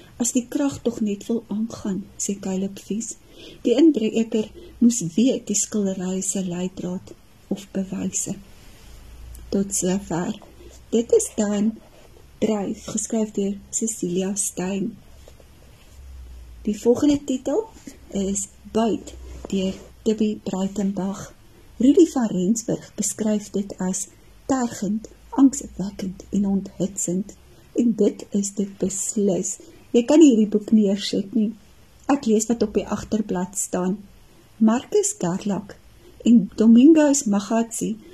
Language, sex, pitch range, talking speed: Dutch, female, 195-235 Hz, 110 wpm